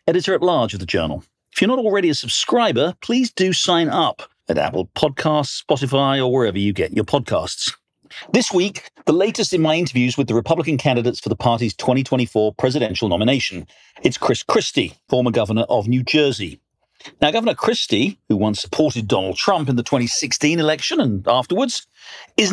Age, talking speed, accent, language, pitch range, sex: 50-69, 170 wpm, British, English, 125-180 Hz, male